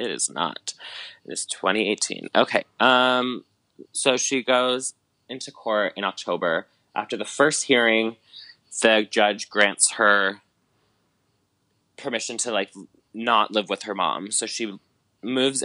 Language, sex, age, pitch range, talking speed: English, male, 20-39, 95-115 Hz, 130 wpm